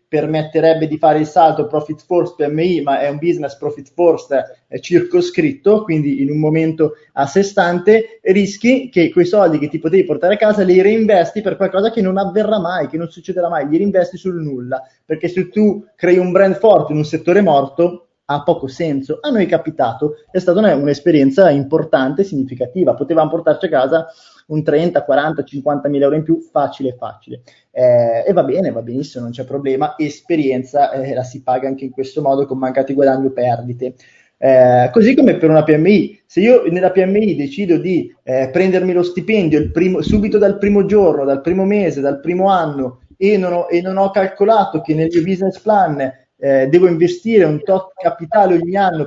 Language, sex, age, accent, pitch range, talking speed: Italian, male, 20-39, native, 145-190 Hz, 190 wpm